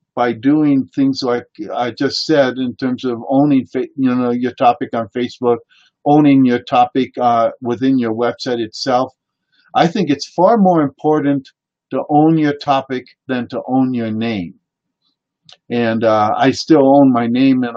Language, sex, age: English, male, 50-69